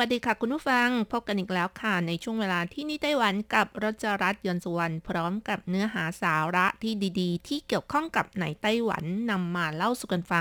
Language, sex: Thai, female